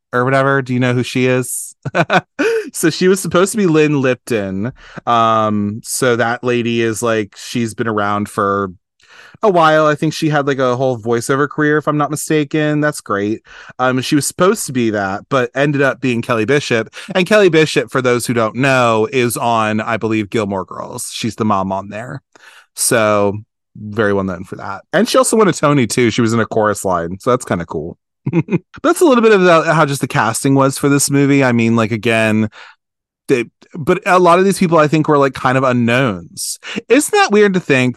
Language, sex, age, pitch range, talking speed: English, male, 20-39, 115-155 Hz, 215 wpm